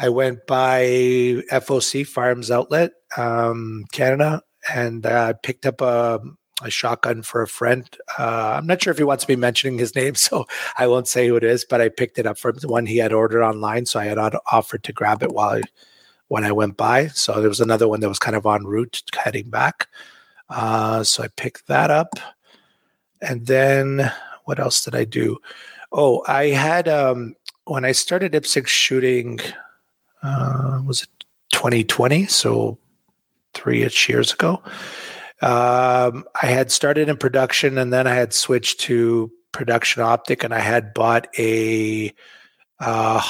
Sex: male